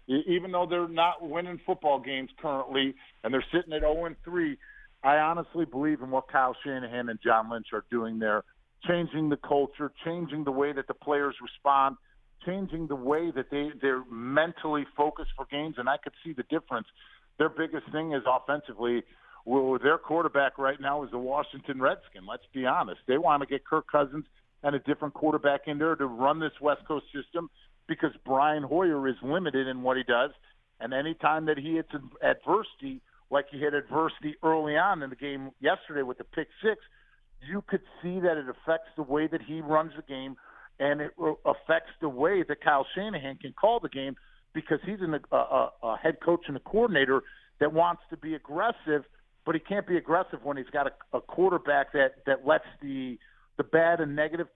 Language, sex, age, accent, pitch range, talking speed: English, male, 50-69, American, 135-165 Hz, 195 wpm